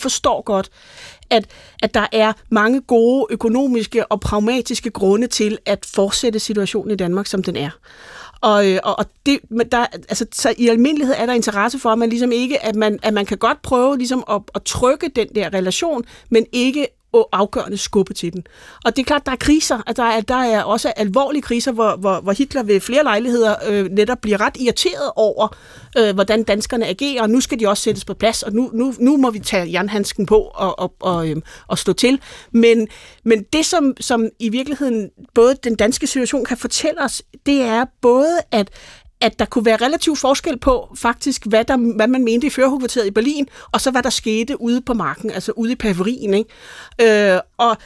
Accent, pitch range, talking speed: native, 215-260 Hz, 205 wpm